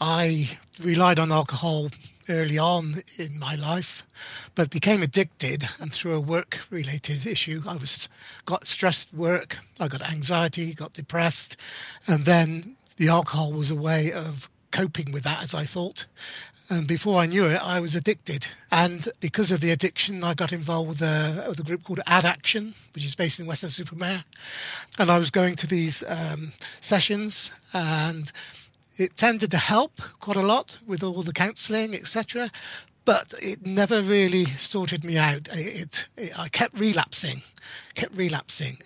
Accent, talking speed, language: British, 165 wpm, English